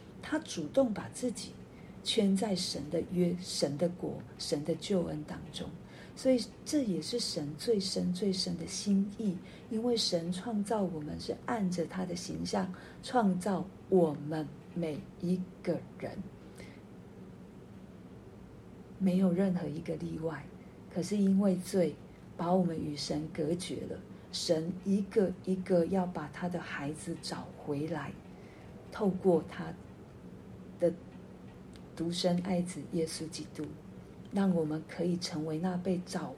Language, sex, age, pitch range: Chinese, female, 50-69, 165-195 Hz